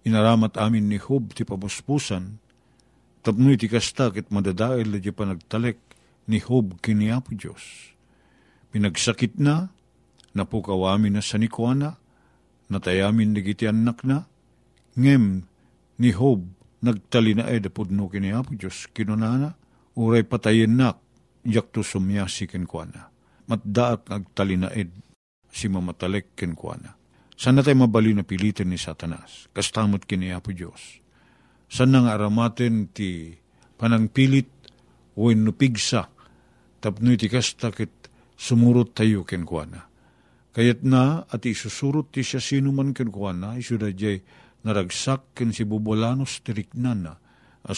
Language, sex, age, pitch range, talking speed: Filipino, male, 50-69, 100-125 Hz, 115 wpm